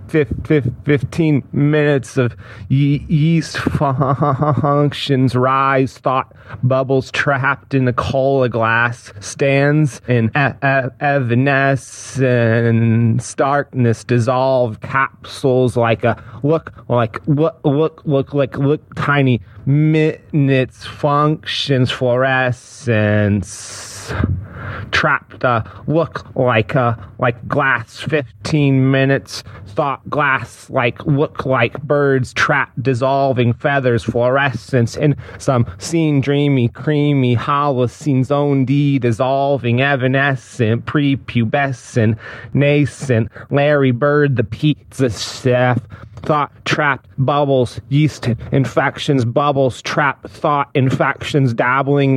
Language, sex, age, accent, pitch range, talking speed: English, male, 30-49, American, 120-145 Hz, 95 wpm